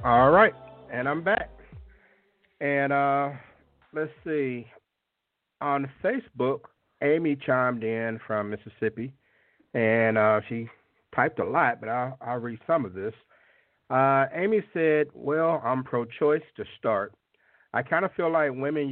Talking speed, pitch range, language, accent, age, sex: 135 wpm, 115-140 Hz, English, American, 50-69, male